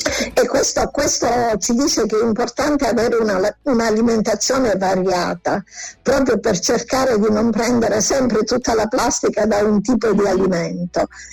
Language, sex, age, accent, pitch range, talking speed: Italian, female, 50-69, native, 215-255 Hz, 145 wpm